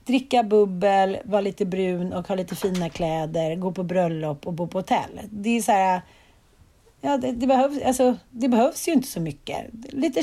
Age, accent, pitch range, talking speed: 40-59, native, 210-270 Hz, 195 wpm